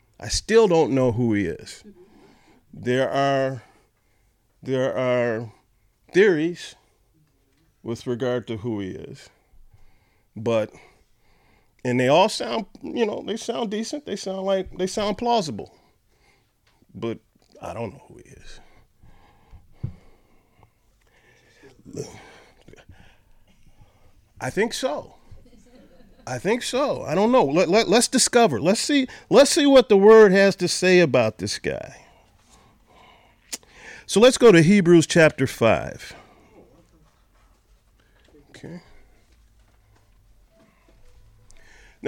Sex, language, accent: male, English, American